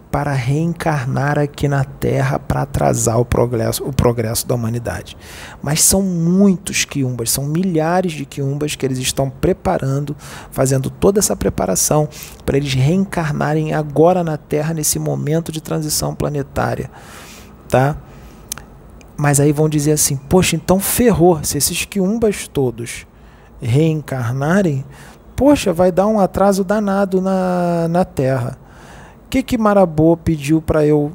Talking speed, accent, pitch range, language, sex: 130 wpm, Brazilian, 130-165 Hz, Portuguese, male